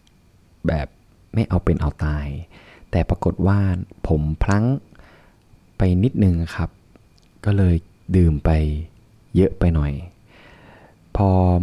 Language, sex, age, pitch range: Thai, male, 20-39, 85-100 Hz